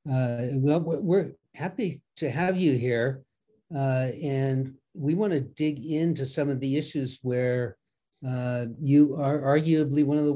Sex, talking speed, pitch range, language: male, 155 wpm, 125-150 Hz, English